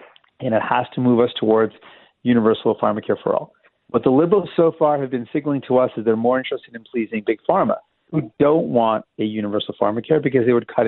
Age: 40-59